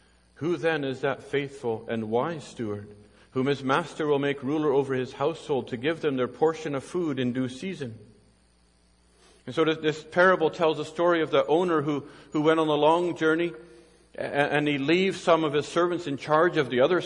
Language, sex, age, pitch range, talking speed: English, male, 50-69, 130-165 Hz, 195 wpm